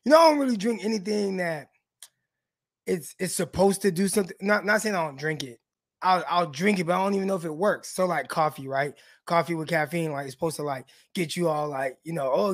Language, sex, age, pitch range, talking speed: English, male, 20-39, 155-210 Hz, 250 wpm